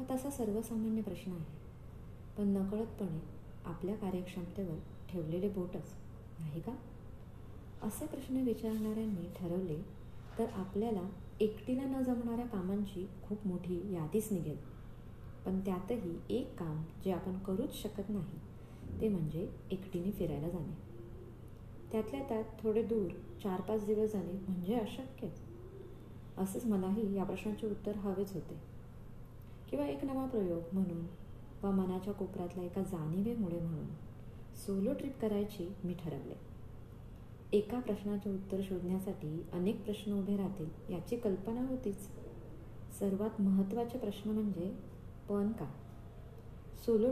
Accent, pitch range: native, 165-215 Hz